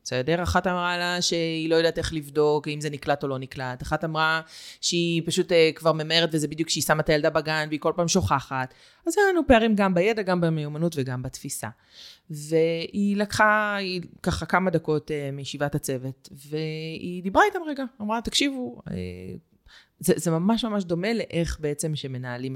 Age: 20-39